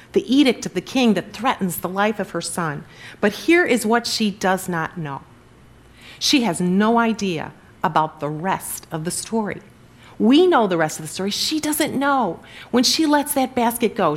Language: English